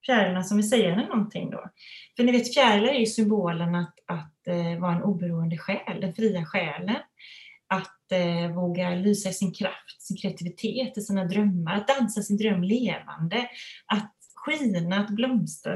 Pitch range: 185-235 Hz